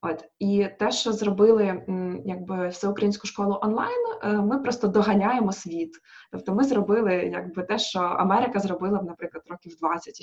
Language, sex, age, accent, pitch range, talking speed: Ukrainian, female, 20-39, native, 185-215 Hz, 135 wpm